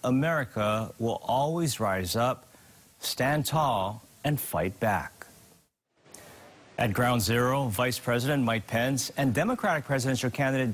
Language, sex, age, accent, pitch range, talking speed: English, male, 40-59, American, 115-145 Hz, 115 wpm